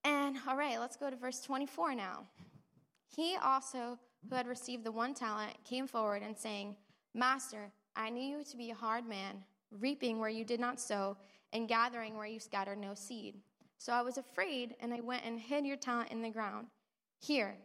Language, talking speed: English, 195 wpm